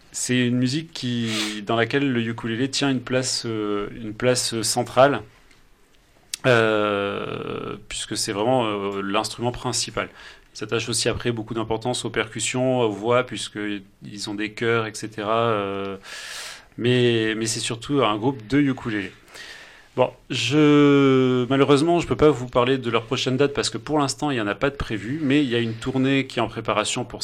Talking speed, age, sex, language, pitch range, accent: 175 wpm, 30-49, male, French, 110-130 Hz, French